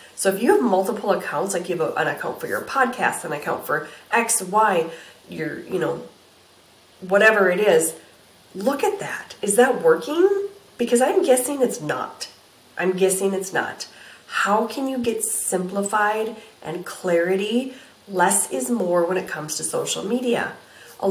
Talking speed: 165 wpm